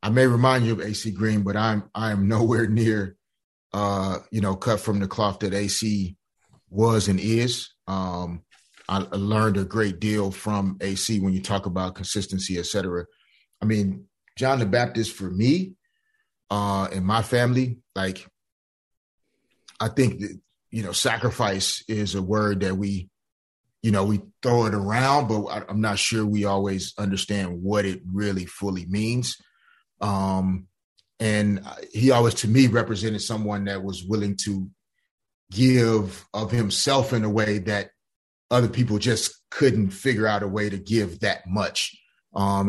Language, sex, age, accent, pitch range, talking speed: English, male, 30-49, American, 95-110 Hz, 160 wpm